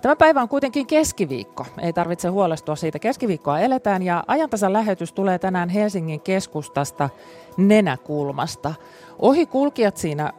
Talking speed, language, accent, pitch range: 115 wpm, Finnish, native, 150-200 Hz